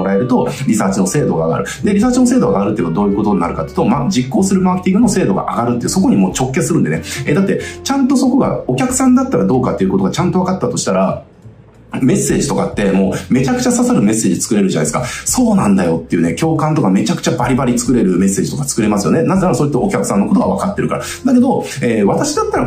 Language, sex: Japanese, male